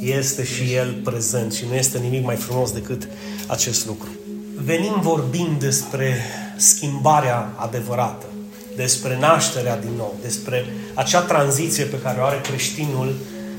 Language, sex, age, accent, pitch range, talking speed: Romanian, male, 30-49, native, 125-165 Hz, 135 wpm